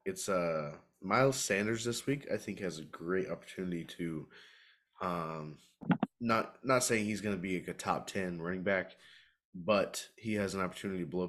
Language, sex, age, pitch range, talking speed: English, male, 20-39, 80-95 Hz, 175 wpm